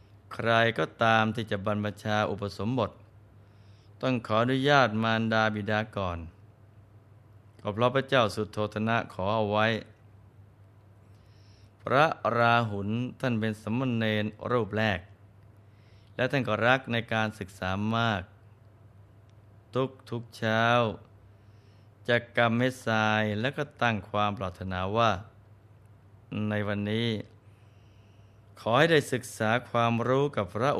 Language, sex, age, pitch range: Thai, male, 20-39, 105-115 Hz